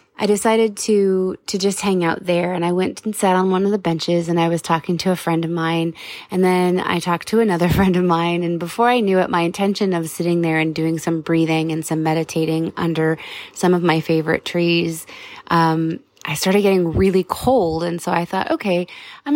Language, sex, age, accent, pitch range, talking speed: English, female, 20-39, American, 170-210 Hz, 220 wpm